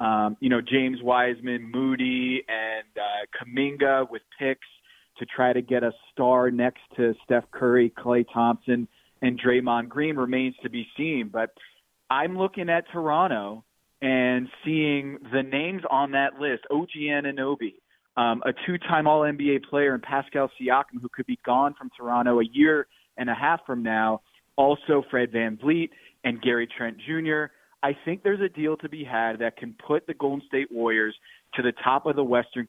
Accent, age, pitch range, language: American, 30-49, 120-145 Hz, English